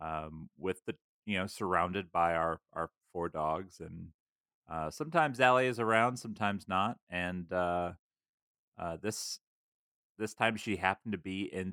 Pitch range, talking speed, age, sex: 90-120 Hz, 155 wpm, 30-49, male